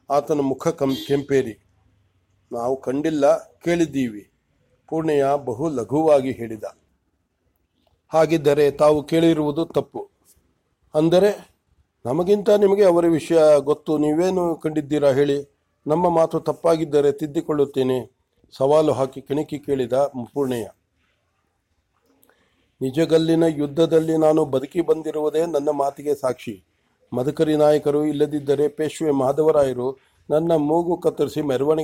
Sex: male